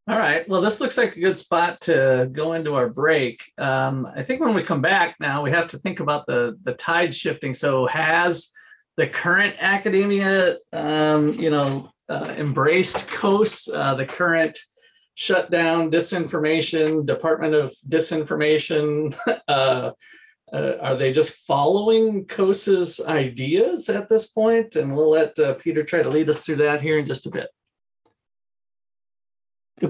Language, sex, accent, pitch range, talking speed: English, male, American, 150-200 Hz, 155 wpm